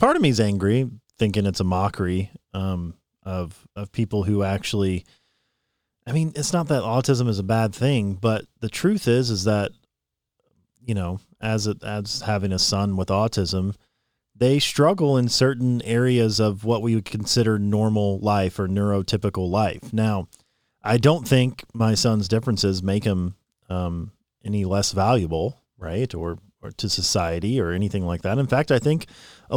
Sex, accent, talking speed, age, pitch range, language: male, American, 170 wpm, 40-59, 95-130 Hz, English